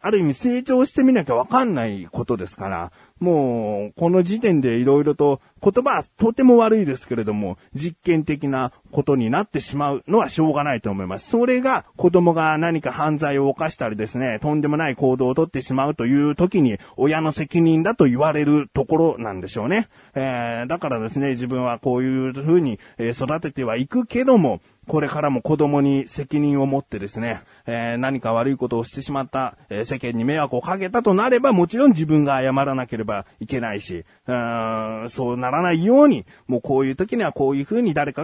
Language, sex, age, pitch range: Japanese, male, 30-49, 125-170 Hz